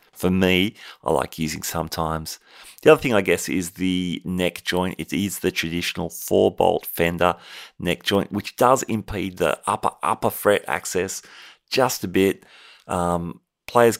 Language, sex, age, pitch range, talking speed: English, male, 30-49, 85-105 Hz, 155 wpm